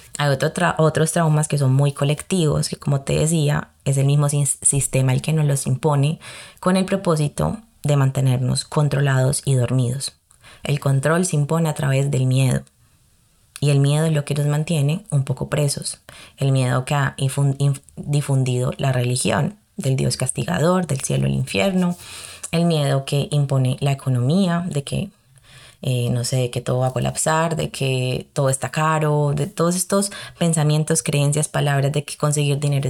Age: 20-39